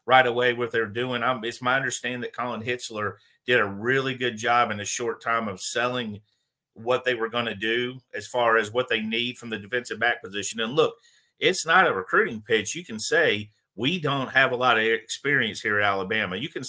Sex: male